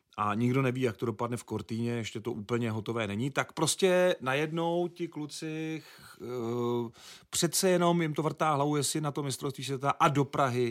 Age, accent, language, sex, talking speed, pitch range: 40-59, native, Czech, male, 185 wpm, 110-140 Hz